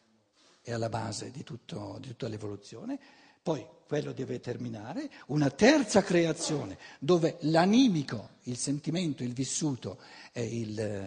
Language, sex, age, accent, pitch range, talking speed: Italian, male, 60-79, native, 115-180 Hz, 115 wpm